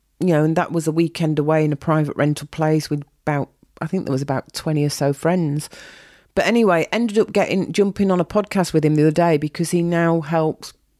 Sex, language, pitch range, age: female, English, 165-195 Hz, 40-59